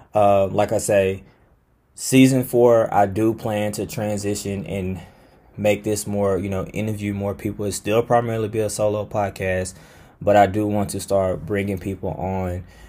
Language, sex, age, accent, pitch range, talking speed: English, male, 10-29, American, 95-105 Hz, 170 wpm